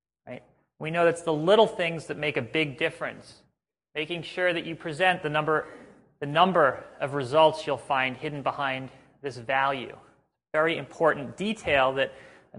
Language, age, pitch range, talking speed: English, 30-49, 135-170 Hz, 155 wpm